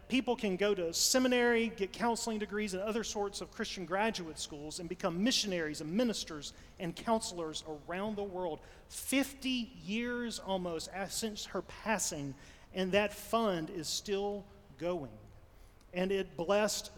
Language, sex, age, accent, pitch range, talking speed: English, male, 40-59, American, 155-220 Hz, 140 wpm